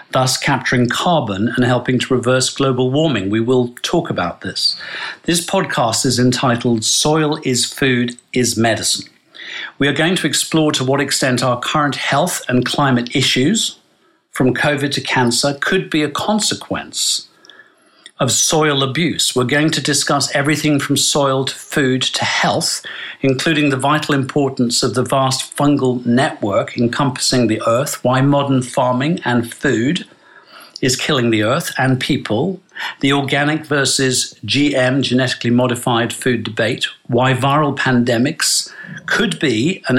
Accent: British